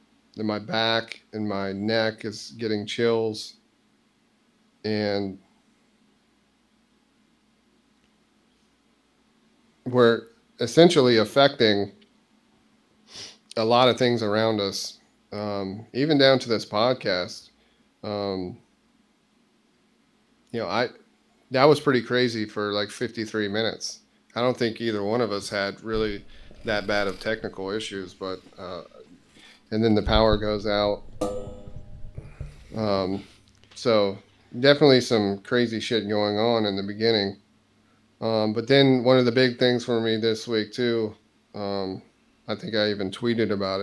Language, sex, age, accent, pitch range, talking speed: English, male, 40-59, American, 105-125 Hz, 125 wpm